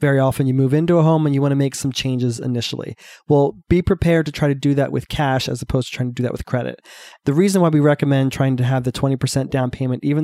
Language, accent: English, American